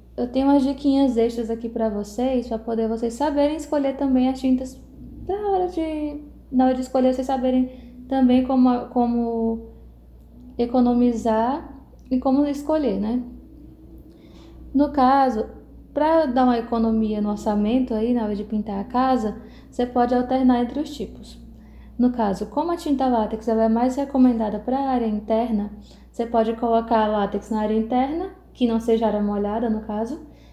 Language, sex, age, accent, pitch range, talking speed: Portuguese, female, 10-29, Brazilian, 220-265 Hz, 160 wpm